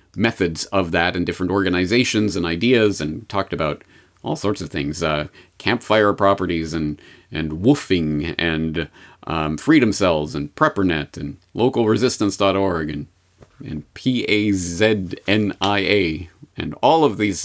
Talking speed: 125 wpm